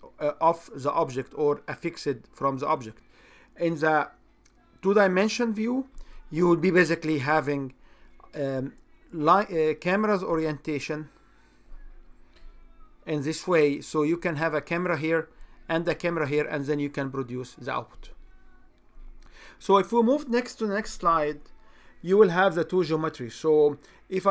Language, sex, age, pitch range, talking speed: English, male, 40-59, 150-180 Hz, 155 wpm